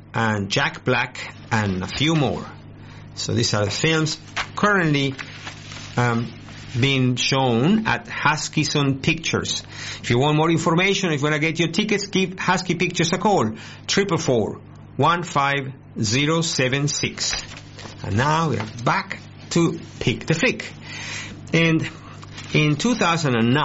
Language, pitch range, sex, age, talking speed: English, 115-155 Hz, male, 50-69, 135 wpm